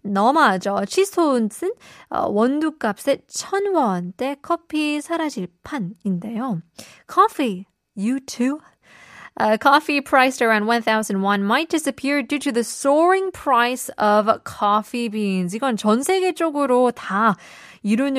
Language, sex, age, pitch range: Korean, female, 20-39, 205-290 Hz